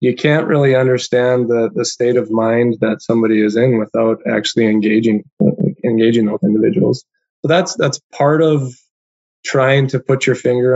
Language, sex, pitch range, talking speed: English, male, 110-130 Hz, 160 wpm